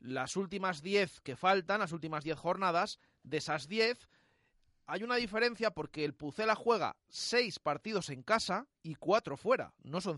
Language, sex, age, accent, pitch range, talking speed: Spanish, male, 30-49, Spanish, 140-190 Hz, 165 wpm